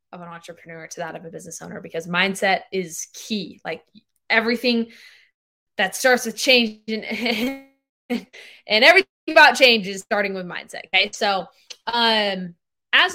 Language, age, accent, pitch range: English, 20-39, American, 195-250 Hz